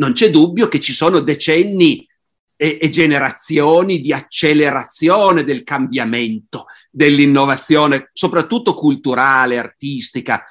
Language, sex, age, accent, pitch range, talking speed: Italian, male, 50-69, native, 130-170 Hz, 110 wpm